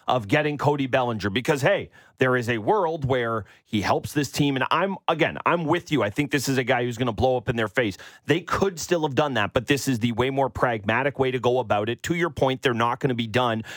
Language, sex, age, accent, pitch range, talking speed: English, male, 30-49, American, 110-145 Hz, 270 wpm